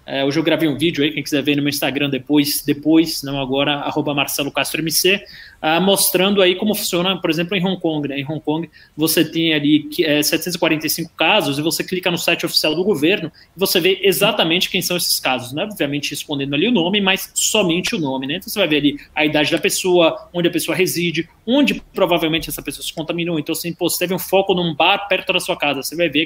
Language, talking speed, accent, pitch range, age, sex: Portuguese, 230 wpm, Brazilian, 150-180 Hz, 20-39, male